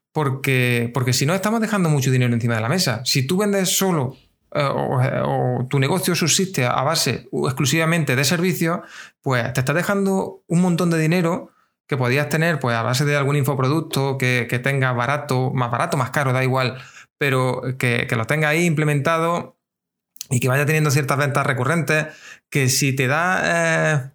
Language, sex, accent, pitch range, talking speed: Spanish, male, Spanish, 130-165 Hz, 180 wpm